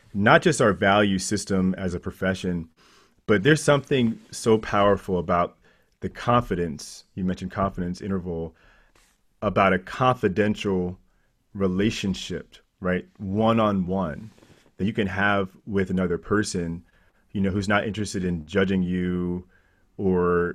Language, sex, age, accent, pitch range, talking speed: English, male, 30-49, American, 90-105 Hz, 130 wpm